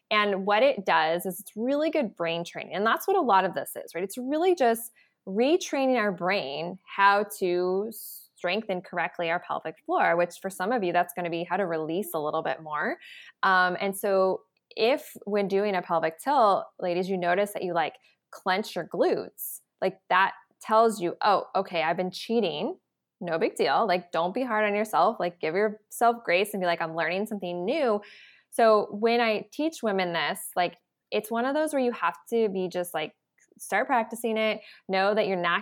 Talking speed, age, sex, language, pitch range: 200 wpm, 20-39, female, English, 175-235 Hz